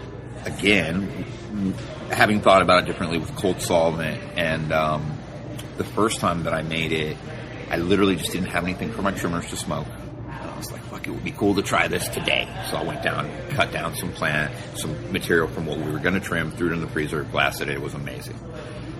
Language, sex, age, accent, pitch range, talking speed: English, male, 40-59, American, 80-120 Hz, 220 wpm